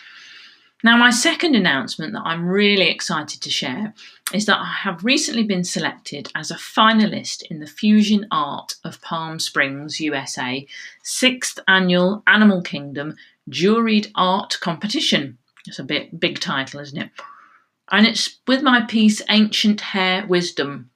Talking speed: 145 wpm